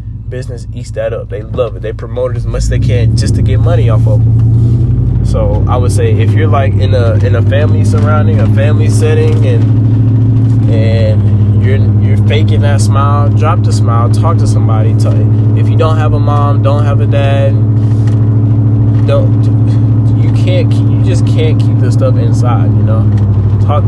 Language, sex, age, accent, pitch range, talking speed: English, male, 20-39, American, 110-115 Hz, 190 wpm